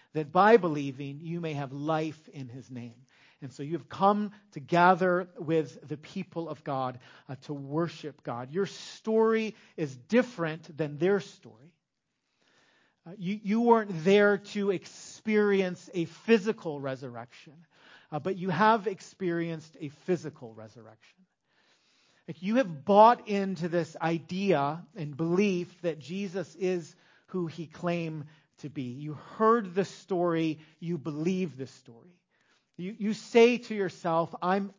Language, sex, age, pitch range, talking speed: English, male, 40-59, 155-200 Hz, 140 wpm